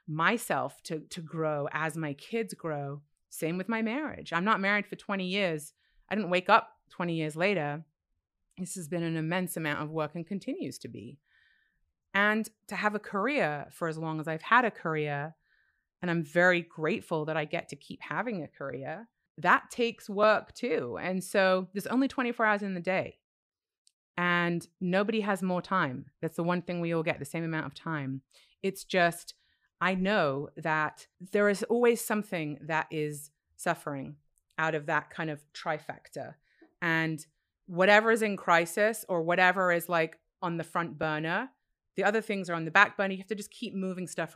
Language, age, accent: English, 30-49, American